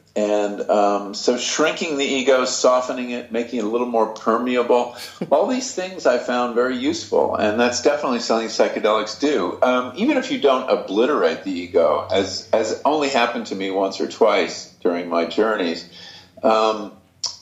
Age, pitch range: 50-69, 100-140 Hz